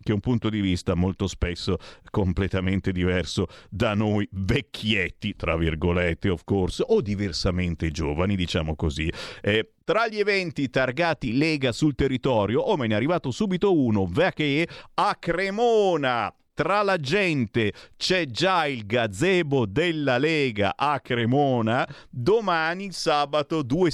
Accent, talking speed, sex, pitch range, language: native, 135 wpm, male, 100-145 Hz, Italian